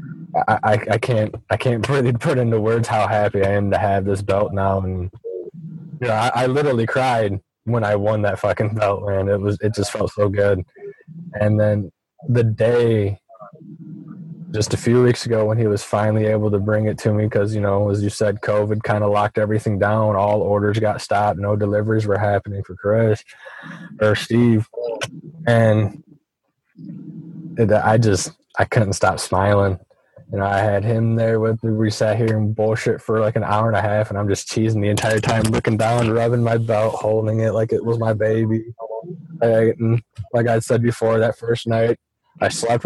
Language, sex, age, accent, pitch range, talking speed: English, male, 20-39, American, 105-120 Hz, 190 wpm